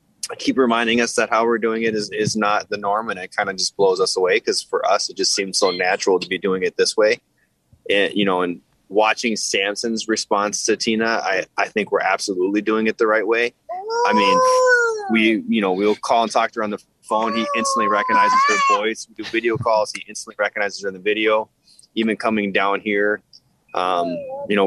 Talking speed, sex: 220 wpm, male